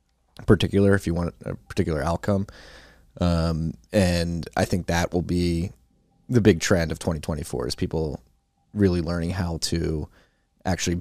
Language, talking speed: English, 140 wpm